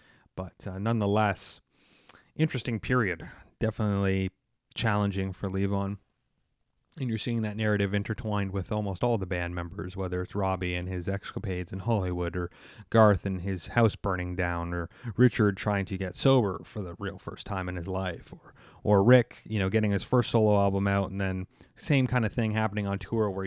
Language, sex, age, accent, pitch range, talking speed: English, male, 30-49, American, 95-120 Hz, 180 wpm